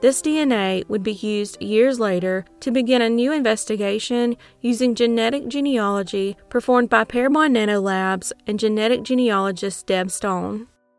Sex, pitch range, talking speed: female, 195-240 Hz, 135 wpm